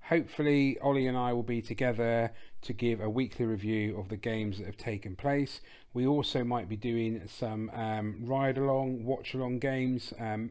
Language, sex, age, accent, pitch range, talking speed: English, male, 30-49, British, 105-125 Hz, 185 wpm